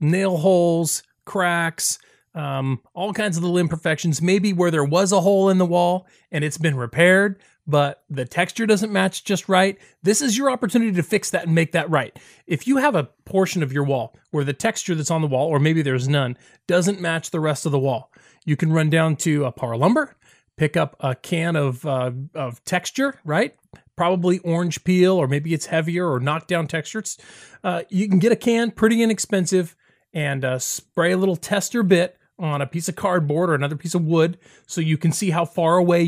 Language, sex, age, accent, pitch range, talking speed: English, male, 30-49, American, 145-185 Hz, 210 wpm